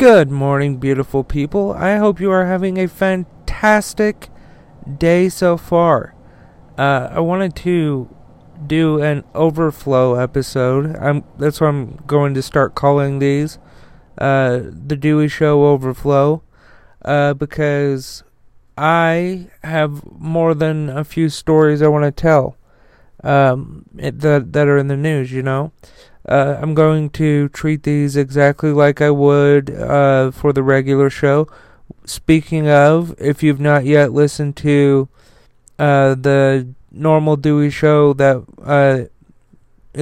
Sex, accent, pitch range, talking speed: male, American, 140-160 Hz, 125 wpm